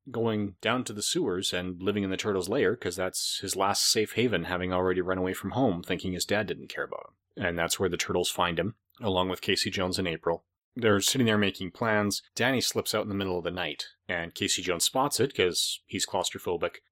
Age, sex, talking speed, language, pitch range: 30-49, male, 230 wpm, English, 90-105 Hz